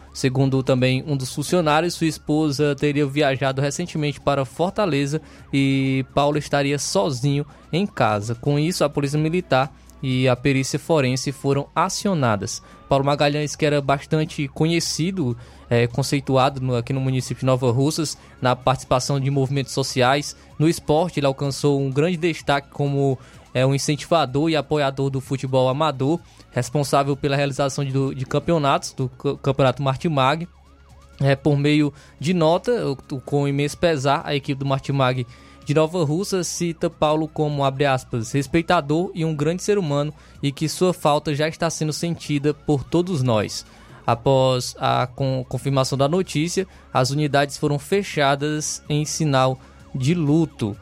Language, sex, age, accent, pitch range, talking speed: Portuguese, male, 20-39, Brazilian, 135-155 Hz, 145 wpm